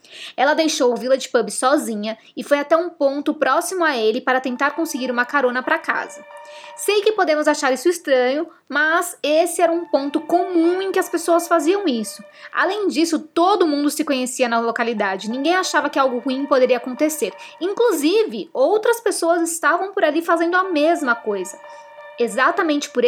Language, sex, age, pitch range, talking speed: Portuguese, female, 20-39, 245-310 Hz, 170 wpm